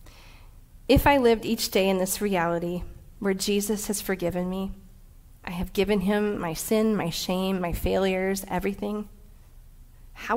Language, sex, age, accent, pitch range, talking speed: English, female, 40-59, American, 175-210 Hz, 145 wpm